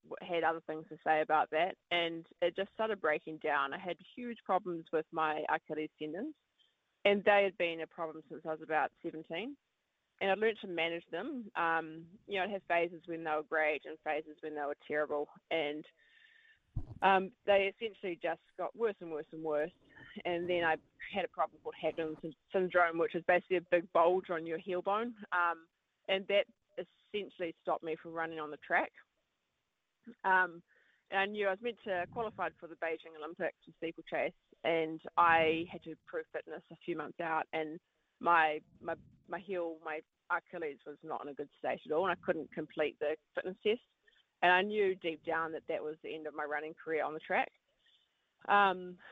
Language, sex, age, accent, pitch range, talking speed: English, female, 20-39, Australian, 160-195 Hz, 195 wpm